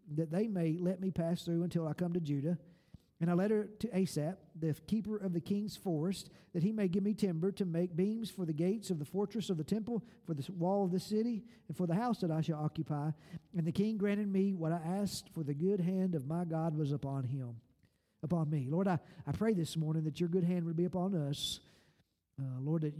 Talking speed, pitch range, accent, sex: 245 wpm, 155-200 Hz, American, male